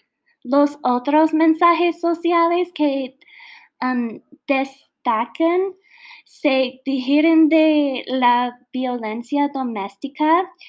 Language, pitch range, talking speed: Spanish, 245-315 Hz, 65 wpm